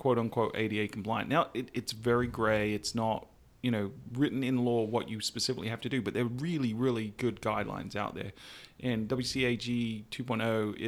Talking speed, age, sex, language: 180 wpm, 30-49, male, English